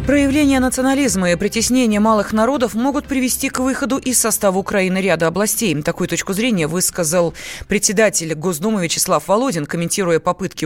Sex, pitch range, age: female, 165-220 Hz, 20-39